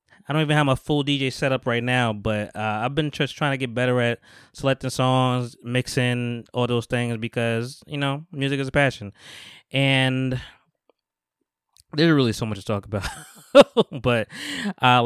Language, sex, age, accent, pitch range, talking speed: English, male, 20-39, American, 115-150 Hz, 175 wpm